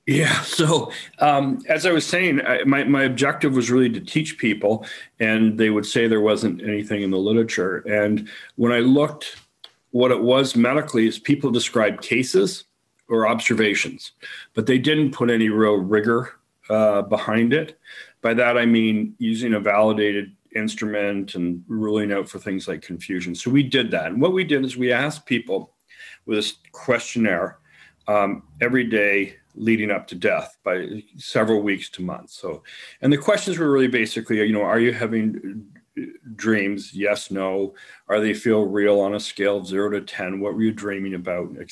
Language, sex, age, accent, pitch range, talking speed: English, male, 40-59, American, 105-125 Hz, 175 wpm